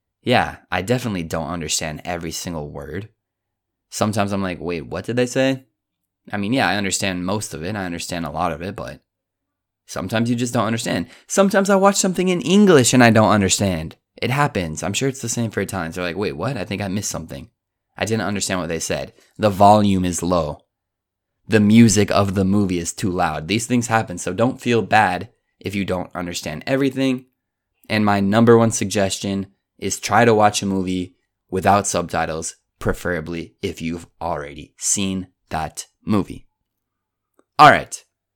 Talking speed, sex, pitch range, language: 180 wpm, male, 90-120 Hz, Italian